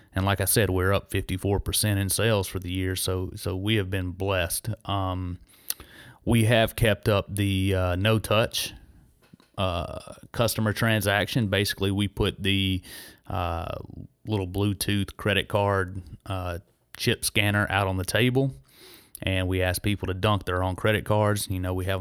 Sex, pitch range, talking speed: male, 95-105 Hz, 165 wpm